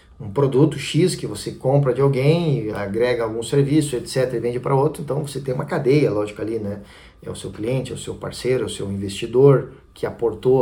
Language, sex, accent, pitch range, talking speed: Portuguese, male, Brazilian, 110-140 Hz, 215 wpm